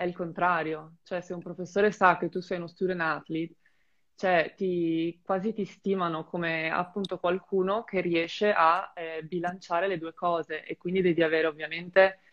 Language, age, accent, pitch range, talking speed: Italian, 20-39, native, 160-180 Hz, 170 wpm